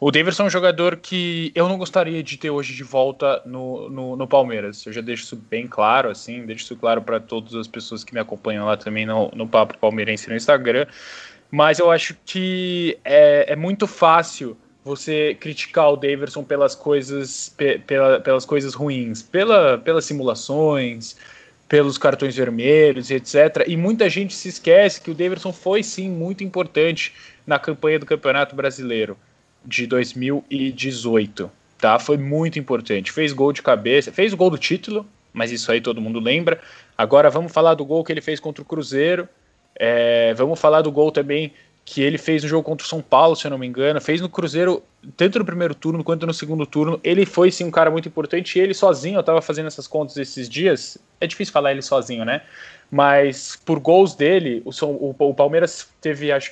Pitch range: 130-170 Hz